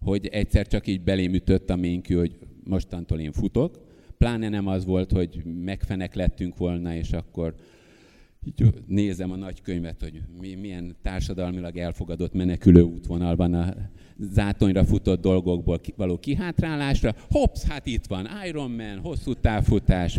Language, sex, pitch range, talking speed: Hungarian, male, 85-105 Hz, 135 wpm